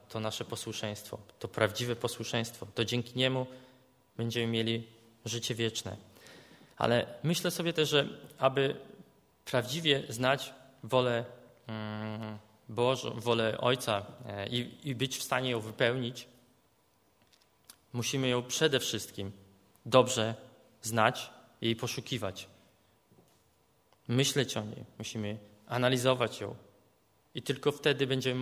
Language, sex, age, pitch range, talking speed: Polish, male, 20-39, 115-130 Hz, 105 wpm